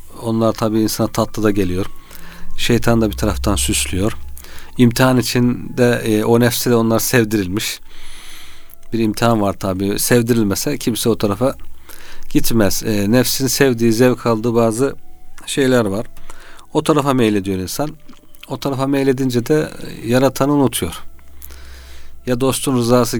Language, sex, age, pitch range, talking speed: Turkish, male, 40-59, 105-130 Hz, 125 wpm